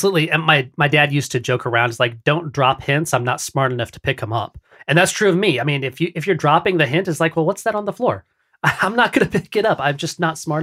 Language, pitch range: English, 120-150 Hz